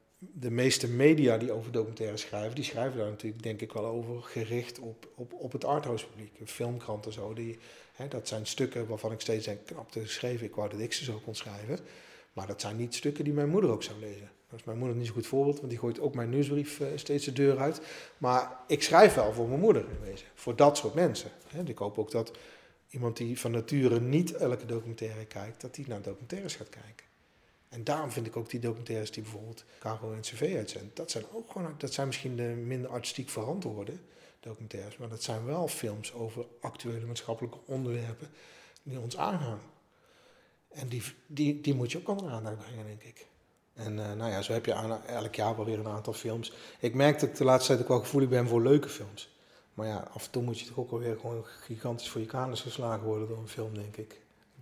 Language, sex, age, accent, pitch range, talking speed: Dutch, male, 40-59, Dutch, 110-130 Hz, 225 wpm